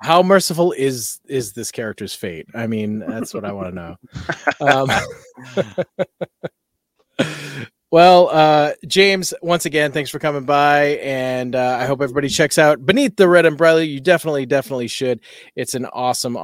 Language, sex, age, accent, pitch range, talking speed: English, male, 30-49, American, 125-165 Hz, 155 wpm